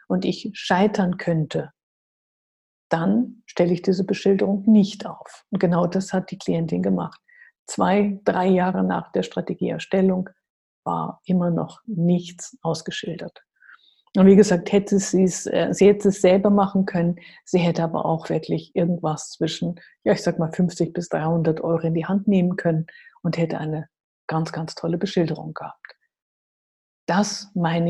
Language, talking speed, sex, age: German, 155 wpm, female, 50-69